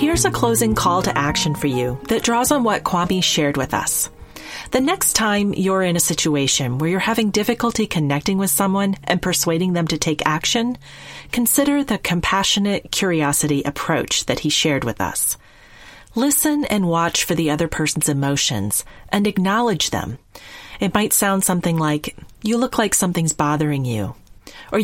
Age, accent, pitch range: 40-59, American, 150-210 Hz